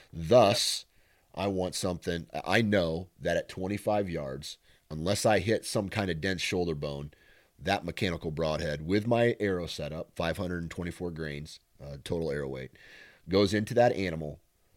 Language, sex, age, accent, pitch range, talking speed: English, male, 30-49, American, 80-95 Hz, 145 wpm